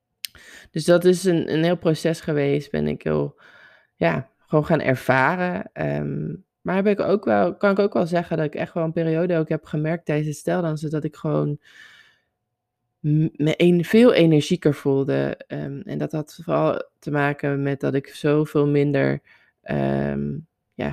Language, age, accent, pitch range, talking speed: Dutch, 20-39, Dutch, 130-165 Hz, 175 wpm